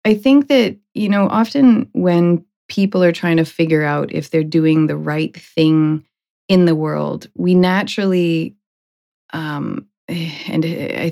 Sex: female